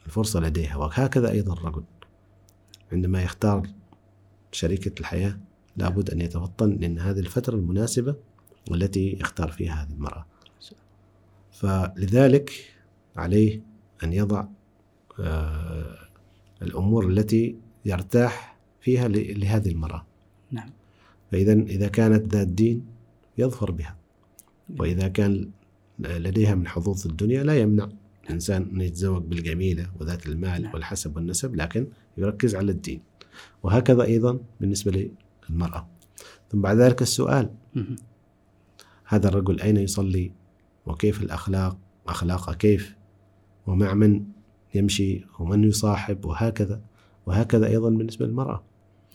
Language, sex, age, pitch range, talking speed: Arabic, male, 50-69, 95-105 Hz, 105 wpm